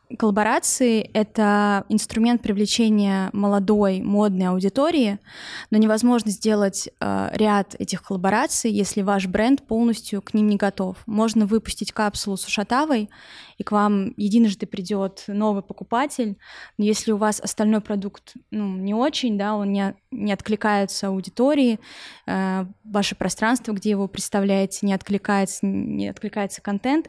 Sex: female